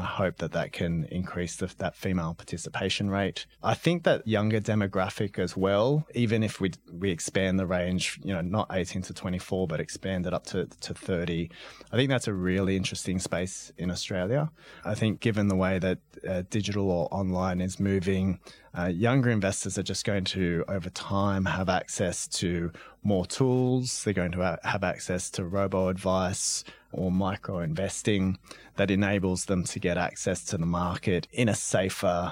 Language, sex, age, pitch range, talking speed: English, male, 20-39, 90-100 Hz, 180 wpm